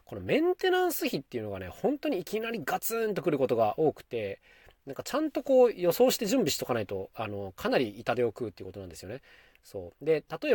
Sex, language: male, Japanese